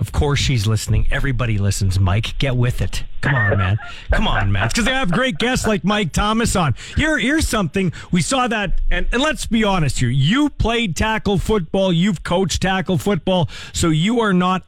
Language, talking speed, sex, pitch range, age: English, 200 wpm, male, 135-195 Hz, 40-59